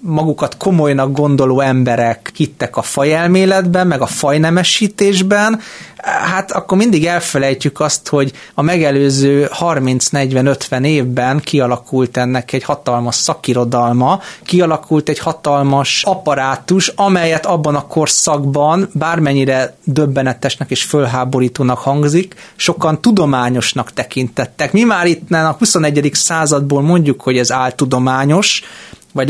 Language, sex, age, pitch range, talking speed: Hungarian, male, 30-49, 135-175 Hz, 110 wpm